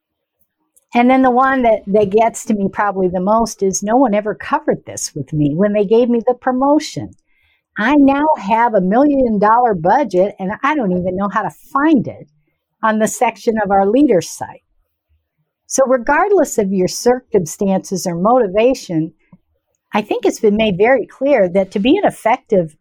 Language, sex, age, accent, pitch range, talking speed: English, female, 60-79, American, 190-255 Hz, 175 wpm